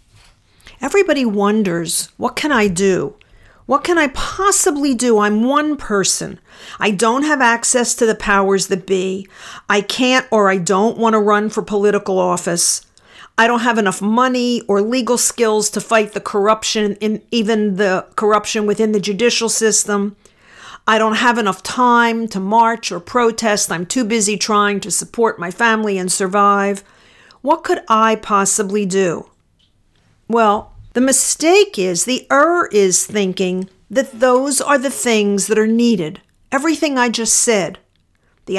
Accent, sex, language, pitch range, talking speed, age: American, female, English, 195-240 Hz, 155 wpm, 50-69